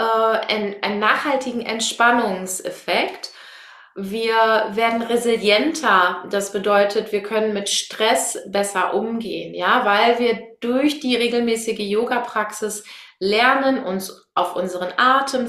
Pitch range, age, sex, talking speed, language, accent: 205-235 Hz, 20-39, female, 105 wpm, German, German